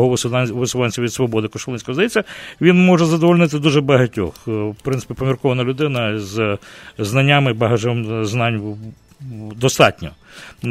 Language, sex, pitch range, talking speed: English, male, 125-160 Hz, 105 wpm